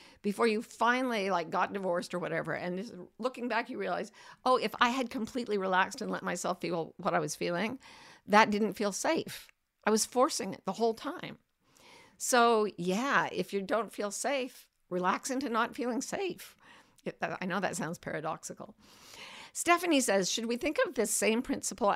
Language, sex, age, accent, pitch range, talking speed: English, female, 50-69, American, 190-245 Hz, 175 wpm